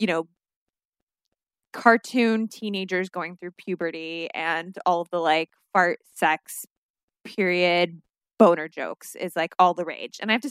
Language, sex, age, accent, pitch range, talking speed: English, female, 20-39, American, 175-215 Hz, 150 wpm